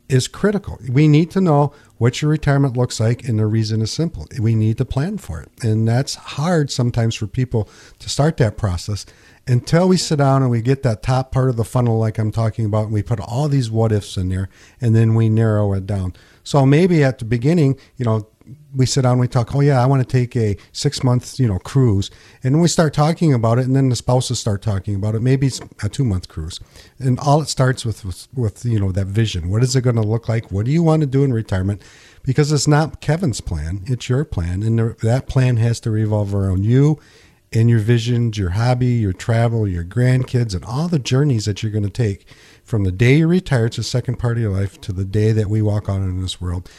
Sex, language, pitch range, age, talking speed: male, English, 105-135 Hz, 50-69, 245 wpm